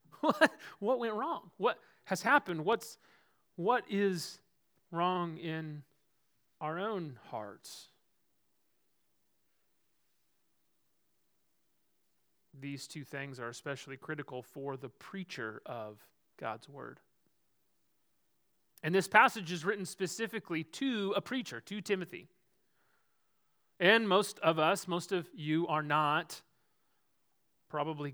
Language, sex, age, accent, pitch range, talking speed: English, male, 30-49, American, 150-220 Hz, 100 wpm